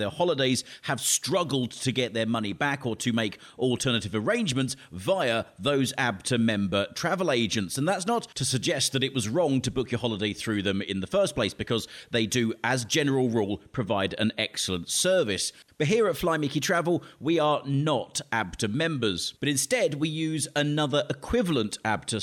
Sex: male